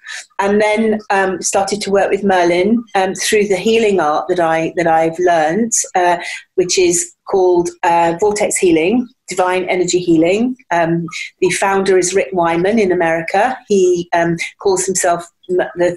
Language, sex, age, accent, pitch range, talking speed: English, female, 40-59, British, 180-225 Hz, 160 wpm